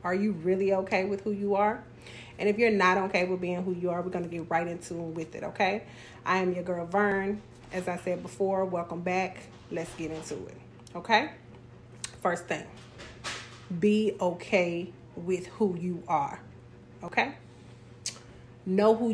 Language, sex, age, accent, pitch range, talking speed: English, female, 30-49, American, 165-210 Hz, 165 wpm